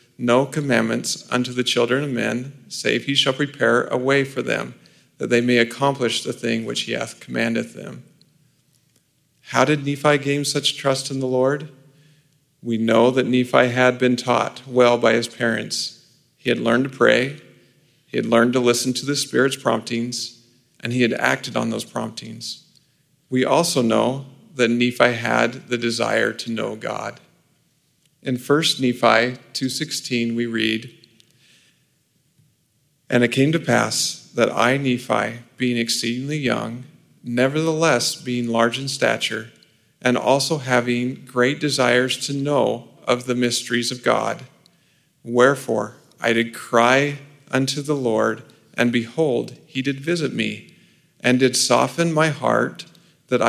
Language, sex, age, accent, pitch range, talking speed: English, male, 40-59, American, 120-140 Hz, 145 wpm